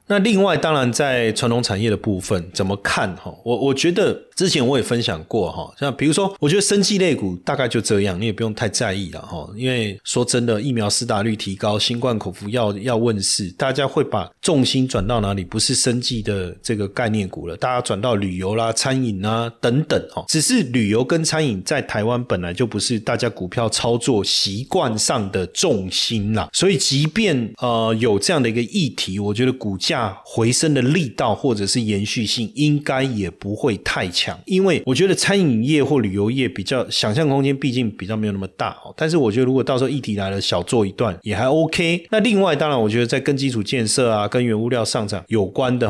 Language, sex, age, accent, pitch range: Chinese, male, 30-49, native, 105-135 Hz